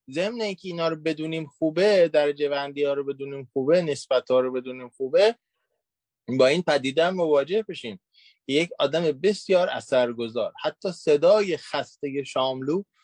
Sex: male